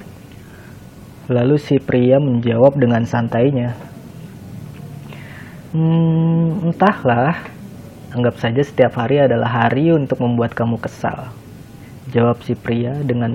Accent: native